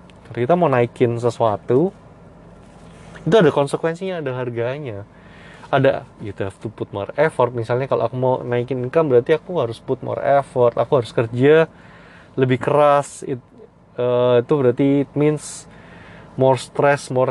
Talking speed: 140 wpm